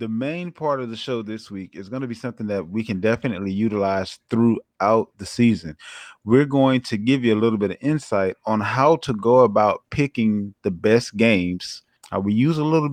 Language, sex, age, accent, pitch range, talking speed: English, male, 30-49, American, 110-130 Hz, 205 wpm